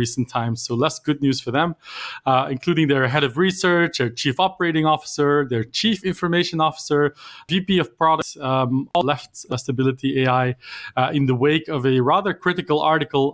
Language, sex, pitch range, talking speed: English, male, 120-150 Hz, 175 wpm